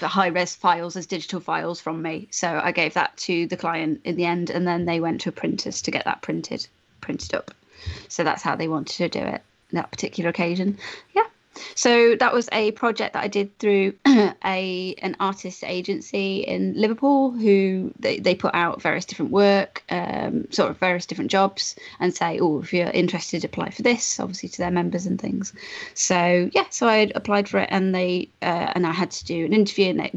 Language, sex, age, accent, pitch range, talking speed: English, female, 20-39, British, 170-200 Hz, 215 wpm